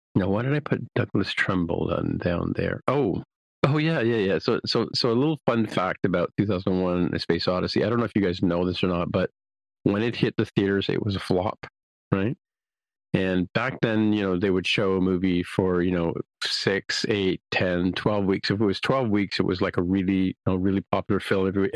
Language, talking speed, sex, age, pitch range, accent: English, 225 wpm, male, 40-59, 95-115 Hz, American